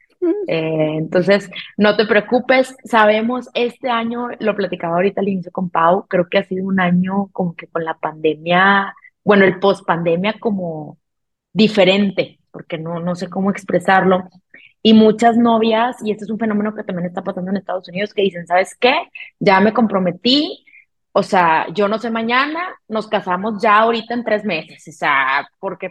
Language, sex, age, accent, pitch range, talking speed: Spanish, female, 20-39, Mexican, 175-220 Hz, 175 wpm